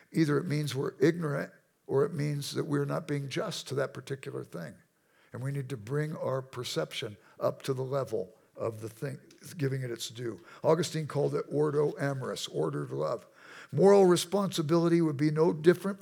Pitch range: 135-170 Hz